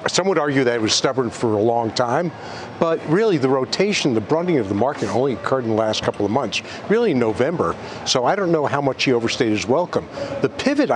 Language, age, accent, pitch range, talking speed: English, 60-79, American, 120-155 Hz, 235 wpm